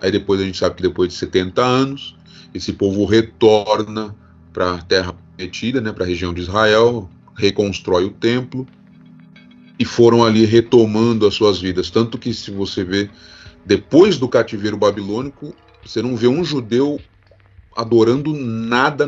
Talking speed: 150 wpm